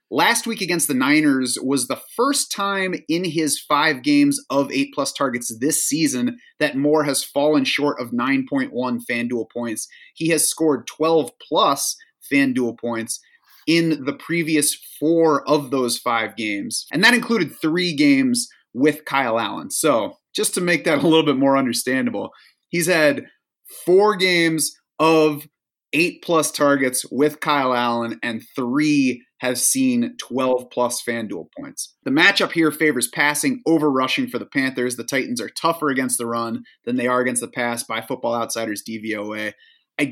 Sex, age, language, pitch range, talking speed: male, 30-49, English, 125-180 Hz, 160 wpm